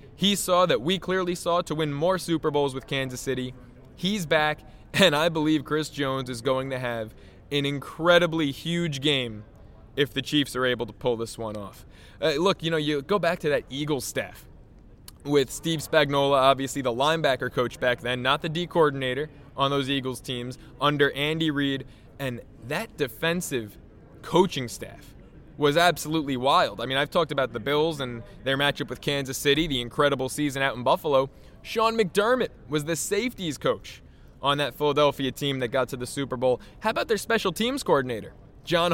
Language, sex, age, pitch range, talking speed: English, male, 20-39, 130-165 Hz, 185 wpm